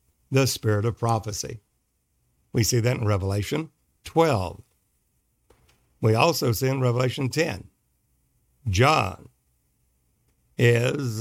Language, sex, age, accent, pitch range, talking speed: English, male, 60-79, American, 115-145 Hz, 95 wpm